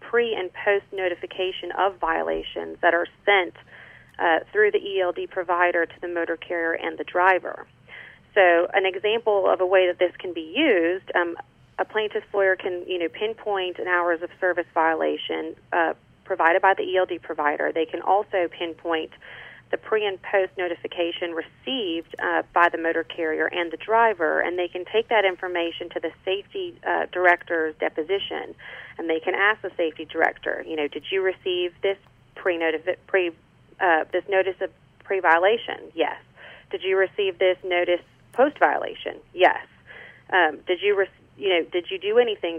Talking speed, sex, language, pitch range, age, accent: 165 wpm, female, English, 165-195 Hz, 30-49, American